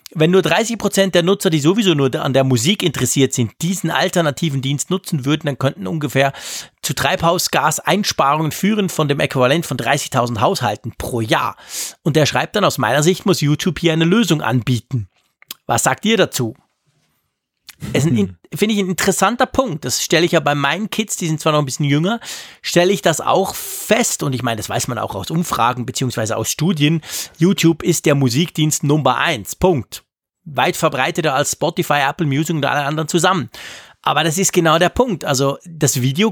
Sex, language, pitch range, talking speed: male, German, 135-180 Hz, 185 wpm